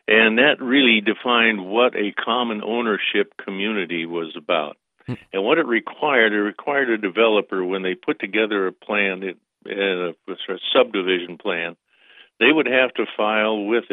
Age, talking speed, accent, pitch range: 50-69, 150 wpm, American, 95-110 Hz